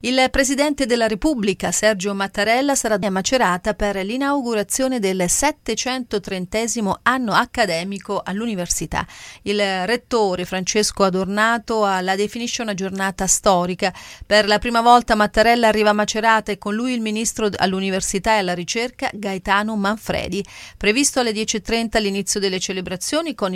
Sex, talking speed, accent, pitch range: female, 130 wpm, native, 190-230 Hz